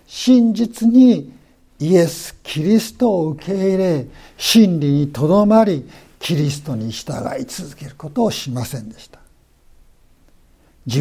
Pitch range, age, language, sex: 135-210 Hz, 60-79, Japanese, male